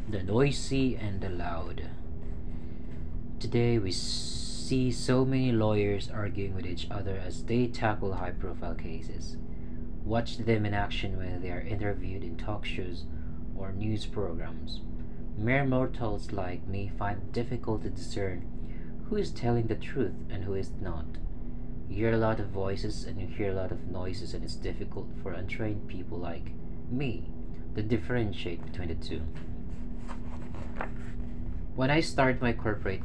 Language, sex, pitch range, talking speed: English, male, 85-115 Hz, 155 wpm